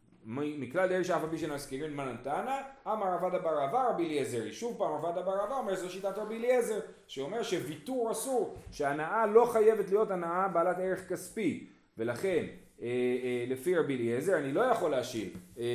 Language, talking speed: Hebrew, 170 wpm